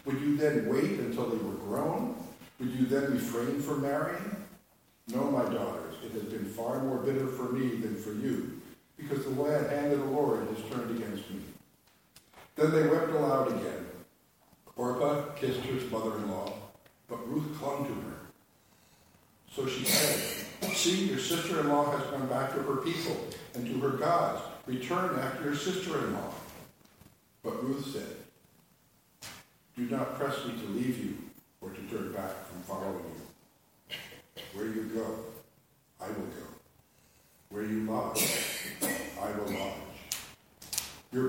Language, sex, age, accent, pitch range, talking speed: English, male, 60-79, American, 110-140 Hz, 150 wpm